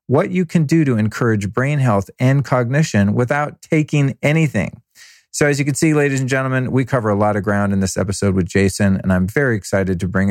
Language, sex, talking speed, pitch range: English, male, 220 wpm, 100-130 Hz